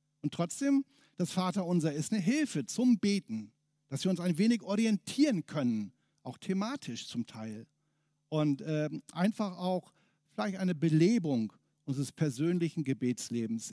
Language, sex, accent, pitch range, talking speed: German, male, German, 155-225 Hz, 130 wpm